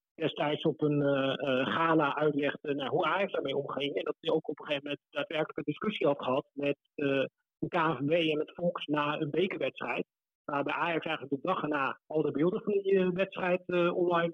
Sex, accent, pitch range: male, Dutch, 145-170 Hz